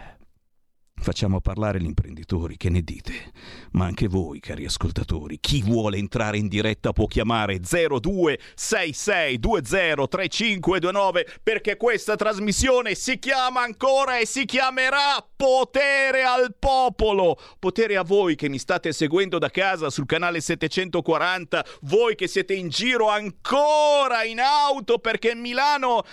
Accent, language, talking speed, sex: native, Italian, 125 wpm, male